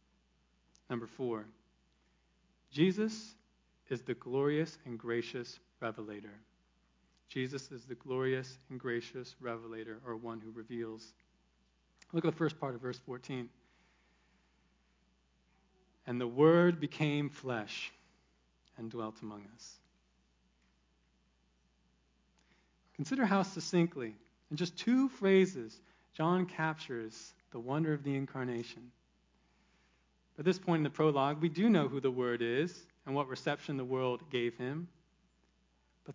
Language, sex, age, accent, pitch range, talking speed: English, male, 40-59, American, 115-190 Hz, 120 wpm